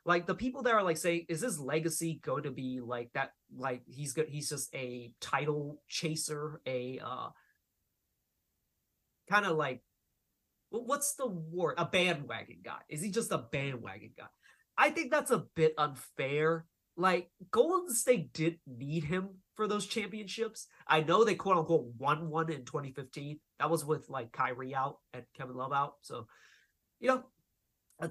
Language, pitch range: English, 145-225 Hz